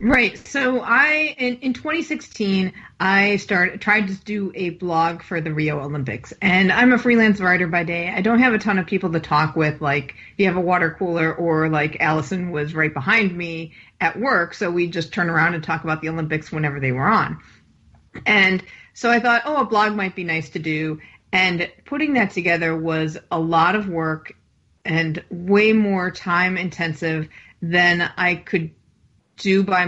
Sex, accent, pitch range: female, American, 160-195 Hz